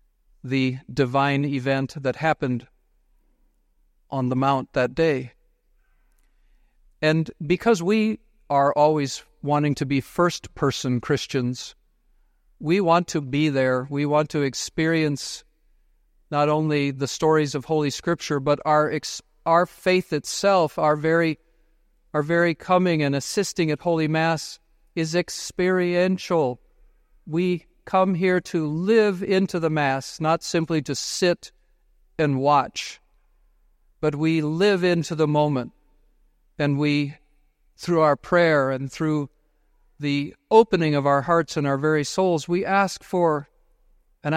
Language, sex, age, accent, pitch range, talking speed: English, male, 50-69, American, 140-175 Hz, 130 wpm